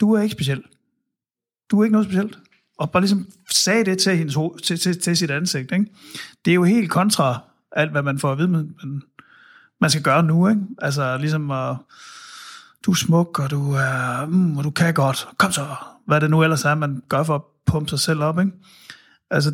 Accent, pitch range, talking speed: native, 140-185 Hz, 215 wpm